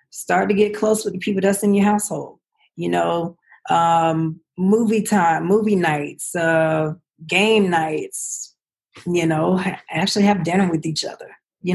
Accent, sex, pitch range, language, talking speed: American, female, 165-195 Hz, English, 155 wpm